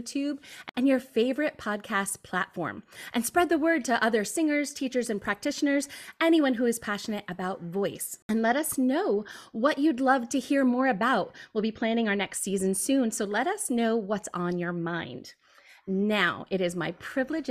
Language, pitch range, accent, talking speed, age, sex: English, 195-255 Hz, American, 180 wpm, 30-49, female